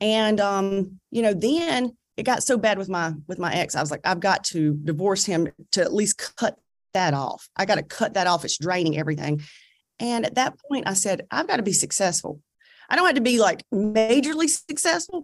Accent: American